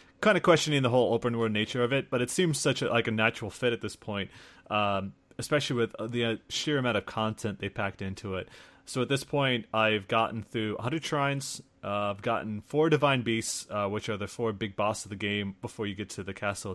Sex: male